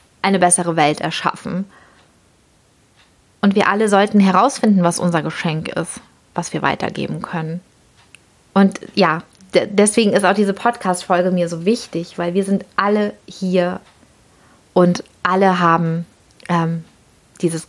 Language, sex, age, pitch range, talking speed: German, female, 30-49, 180-210 Hz, 125 wpm